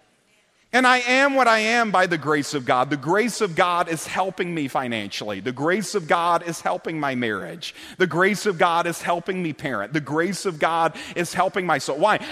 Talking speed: 215 wpm